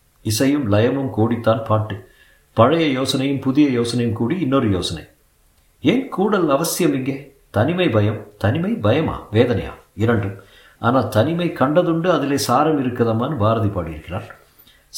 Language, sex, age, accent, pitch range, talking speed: Tamil, male, 50-69, native, 100-130 Hz, 115 wpm